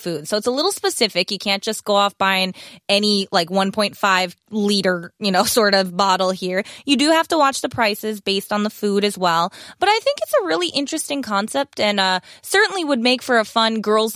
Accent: American